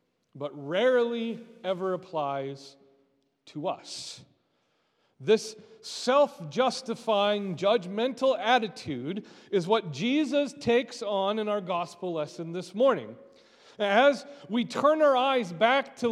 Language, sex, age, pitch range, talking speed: English, male, 40-59, 175-240 Hz, 110 wpm